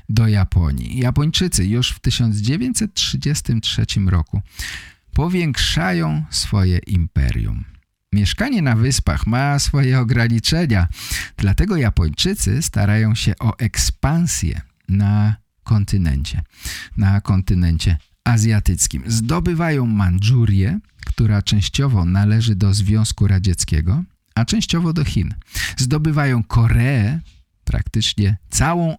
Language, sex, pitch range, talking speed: Polish, male, 95-125 Hz, 90 wpm